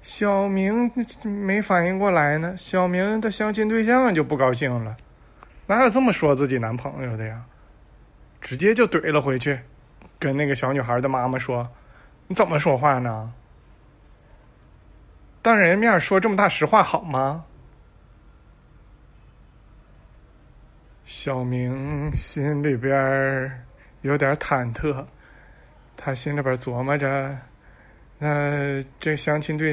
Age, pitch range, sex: 20-39, 125-170 Hz, male